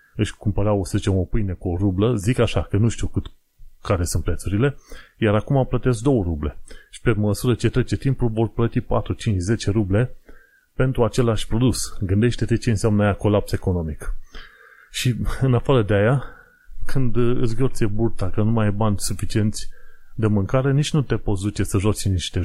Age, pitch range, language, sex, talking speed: 30-49, 100-120 Hz, Romanian, male, 185 wpm